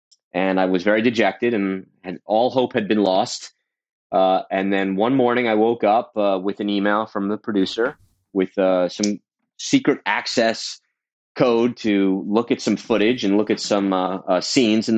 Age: 30-49